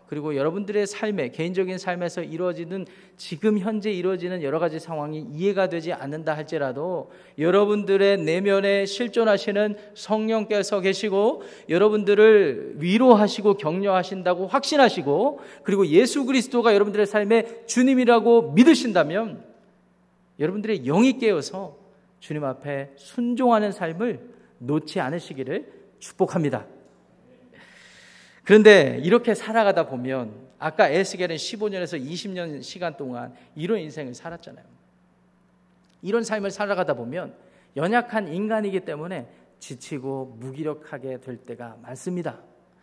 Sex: male